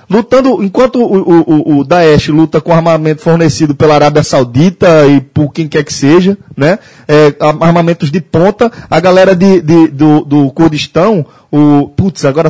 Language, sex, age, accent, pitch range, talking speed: Portuguese, male, 20-39, Brazilian, 150-205 Hz, 145 wpm